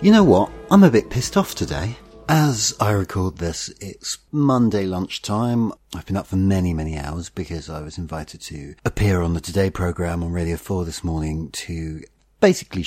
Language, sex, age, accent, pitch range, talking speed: English, male, 40-59, British, 75-105 Hz, 185 wpm